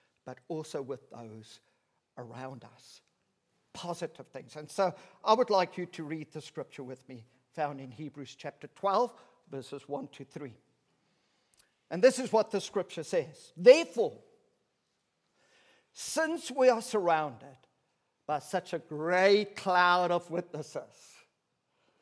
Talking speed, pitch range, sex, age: 130 wpm, 150-235 Hz, male, 50-69